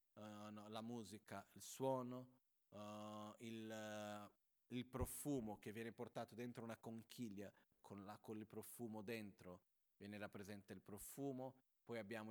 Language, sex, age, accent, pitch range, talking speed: Italian, male, 30-49, native, 100-125 Hz, 140 wpm